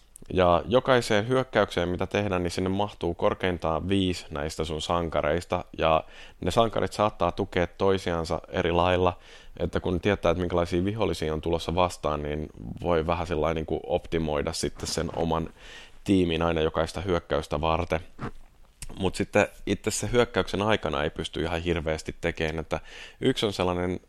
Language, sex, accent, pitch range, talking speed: Finnish, male, native, 80-95 Hz, 145 wpm